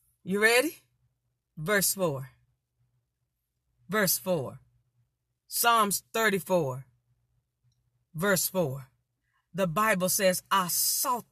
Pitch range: 135-215 Hz